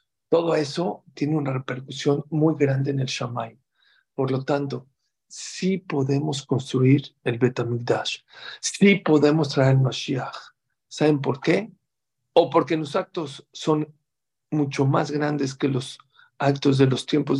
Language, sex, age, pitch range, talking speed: English, male, 50-69, 130-150 Hz, 145 wpm